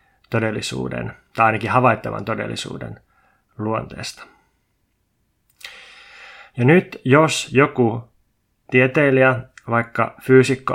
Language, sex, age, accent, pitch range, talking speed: Finnish, male, 20-39, native, 110-130 Hz, 75 wpm